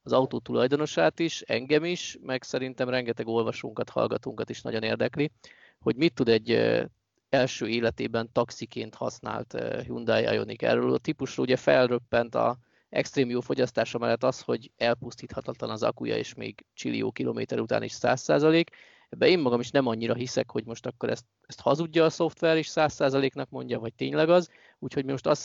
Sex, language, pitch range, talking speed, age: male, Hungarian, 115-145 Hz, 165 wpm, 20-39